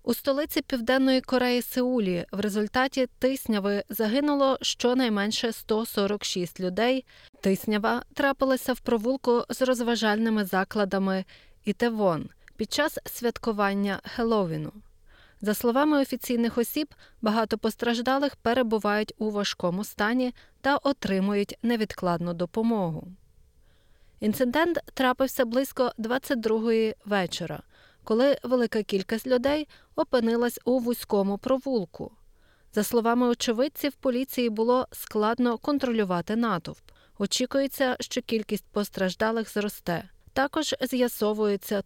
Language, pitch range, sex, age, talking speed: Ukrainian, 200-255 Hz, female, 20-39, 95 wpm